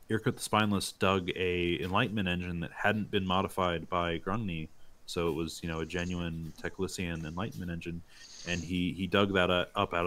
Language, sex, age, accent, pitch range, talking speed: English, male, 30-49, American, 85-95 Hz, 180 wpm